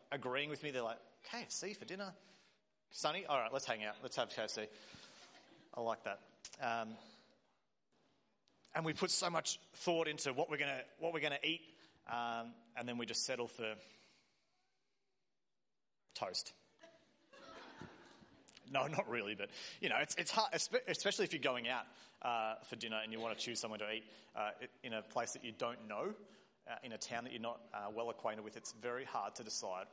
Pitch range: 115-145 Hz